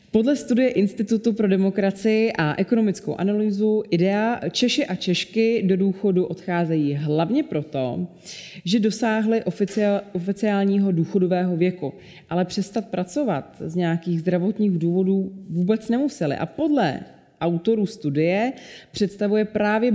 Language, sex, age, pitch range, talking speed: Czech, female, 30-49, 170-205 Hz, 110 wpm